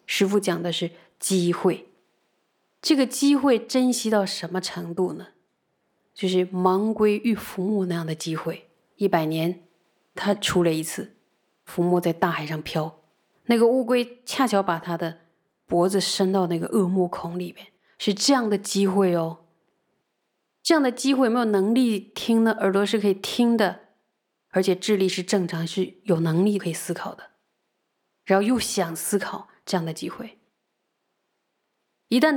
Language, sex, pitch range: Chinese, female, 175-205 Hz